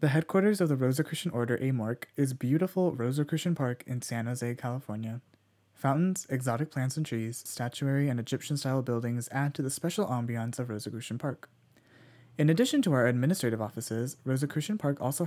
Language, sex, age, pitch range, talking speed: English, male, 20-39, 120-155 Hz, 160 wpm